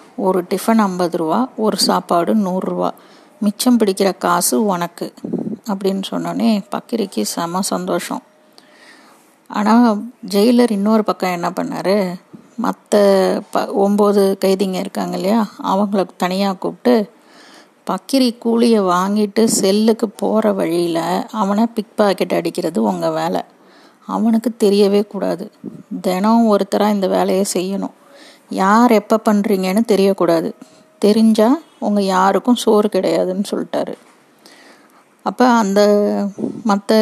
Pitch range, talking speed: 195-230 Hz, 105 wpm